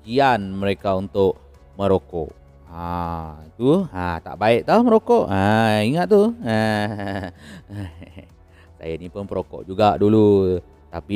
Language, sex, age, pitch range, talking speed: Malay, male, 30-49, 90-110 Hz, 125 wpm